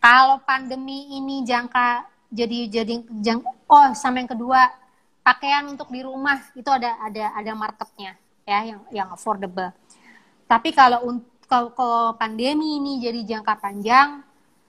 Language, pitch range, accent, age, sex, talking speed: Indonesian, 215-265 Hz, native, 20-39, female, 135 wpm